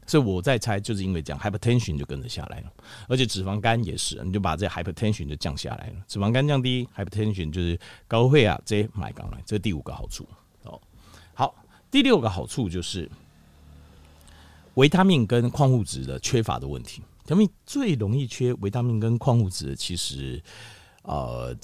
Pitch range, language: 85-125 Hz, Chinese